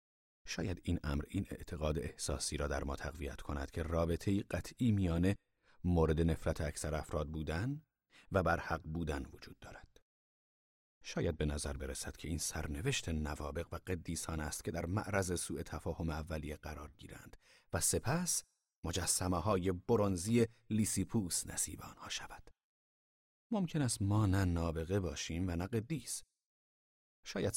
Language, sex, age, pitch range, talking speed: Persian, male, 40-59, 75-110 Hz, 135 wpm